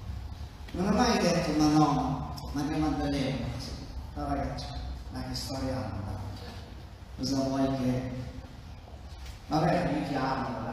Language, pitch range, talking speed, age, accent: Italian, 115-170 Hz, 175 wpm, 30-49, native